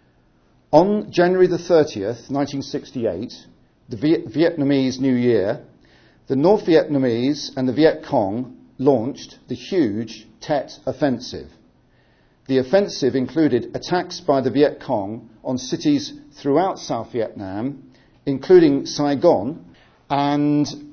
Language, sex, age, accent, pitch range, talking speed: English, male, 50-69, British, 125-160 Hz, 110 wpm